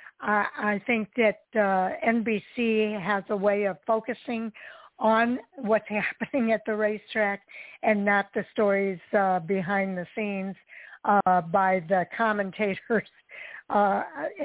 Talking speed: 120 wpm